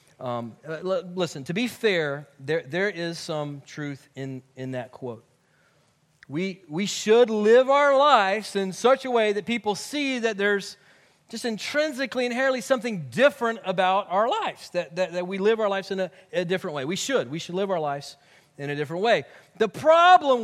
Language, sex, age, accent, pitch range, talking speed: English, male, 40-59, American, 150-230 Hz, 180 wpm